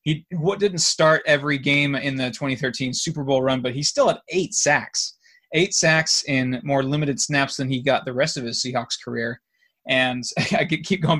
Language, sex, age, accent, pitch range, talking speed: English, male, 20-39, American, 130-170 Hz, 200 wpm